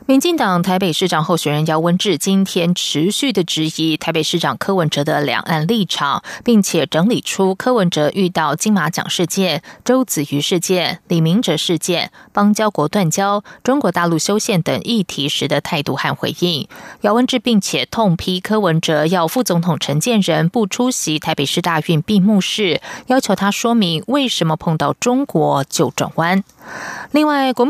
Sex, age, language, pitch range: female, 20-39, German, 155-210 Hz